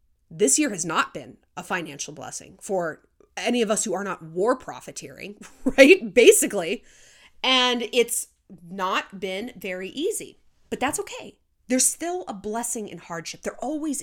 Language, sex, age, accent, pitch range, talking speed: English, female, 30-49, American, 200-300 Hz, 155 wpm